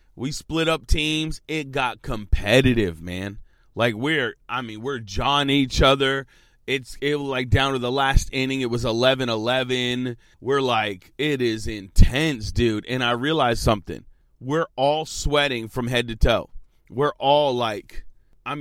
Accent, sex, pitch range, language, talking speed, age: American, male, 110-140 Hz, English, 160 wpm, 30-49